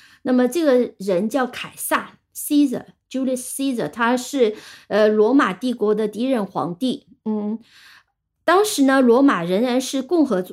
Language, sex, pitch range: Chinese, female, 195-260 Hz